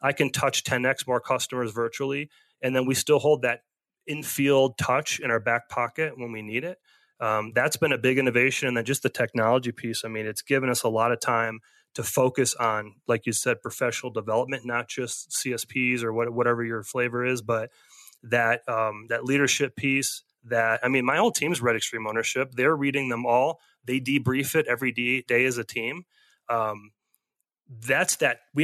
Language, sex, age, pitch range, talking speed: English, male, 30-49, 115-130 Hz, 195 wpm